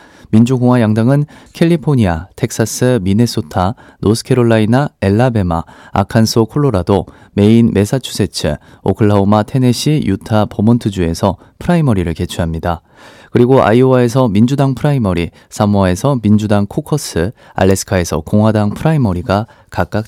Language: Korean